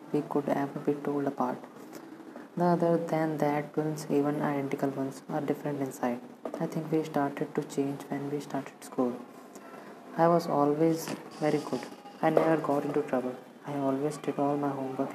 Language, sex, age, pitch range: English, female, 20-39, 140-155 Hz